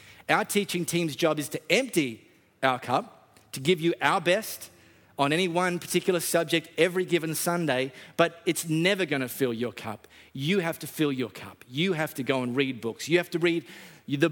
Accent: Australian